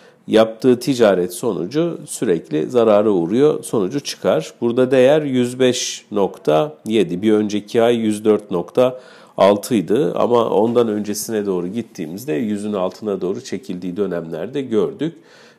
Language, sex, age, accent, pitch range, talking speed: Turkish, male, 50-69, native, 105-140 Hz, 105 wpm